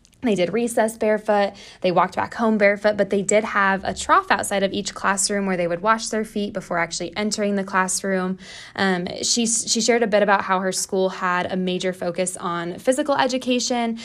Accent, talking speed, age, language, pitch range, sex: American, 200 wpm, 10-29, English, 175-205 Hz, female